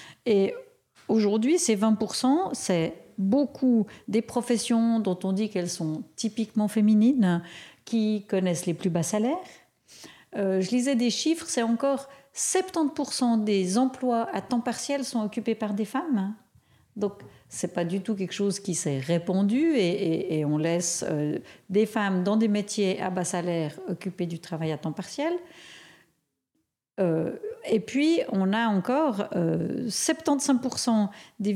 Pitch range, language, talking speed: 190-255 Hz, French, 150 wpm